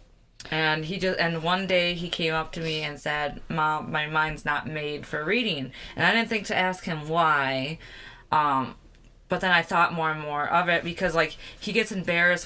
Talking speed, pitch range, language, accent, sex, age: 205 wpm, 150-180 Hz, English, American, female, 20-39